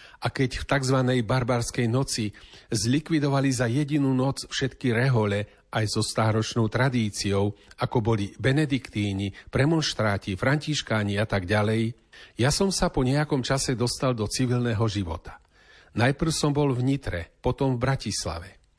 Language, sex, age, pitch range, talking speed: Slovak, male, 40-59, 105-130 Hz, 135 wpm